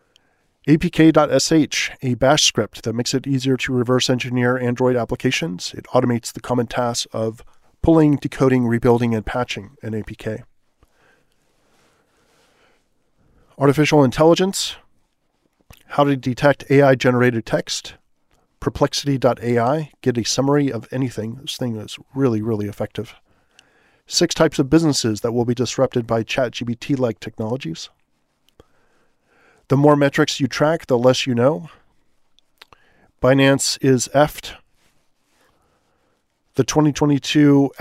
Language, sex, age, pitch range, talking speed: English, male, 40-59, 120-145 Hz, 115 wpm